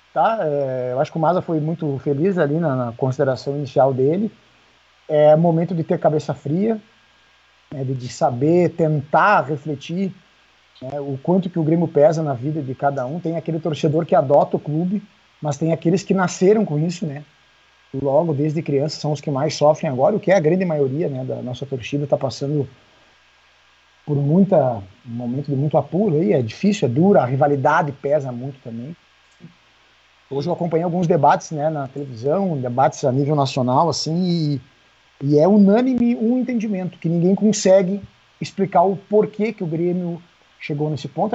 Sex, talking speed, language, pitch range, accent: male, 180 wpm, Portuguese, 145-185 Hz, Brazilian